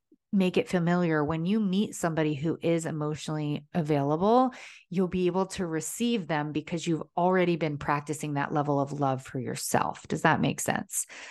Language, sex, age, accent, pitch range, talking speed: English, female, 30-49, American, 155-185 Hz, 170 wpm